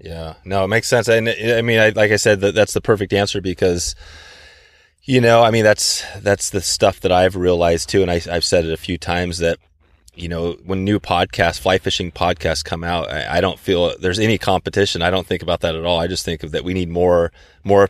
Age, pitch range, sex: 30-49, 80-95 Hz, male